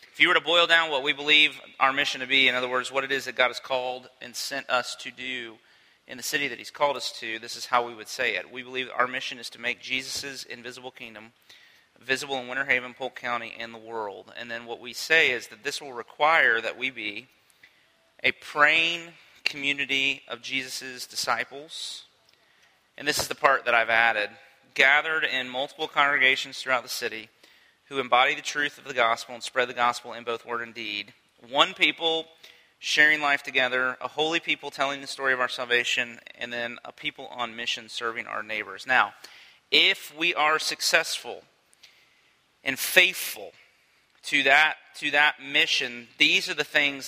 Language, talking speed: English, 190 wpm